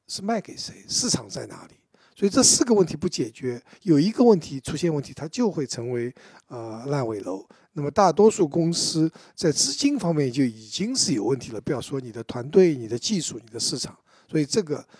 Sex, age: male, 60-79